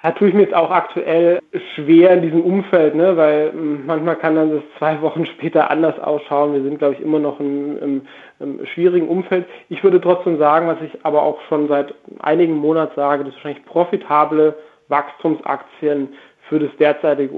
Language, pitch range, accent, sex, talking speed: German, 140-160 Hz, German, male, 185 wpm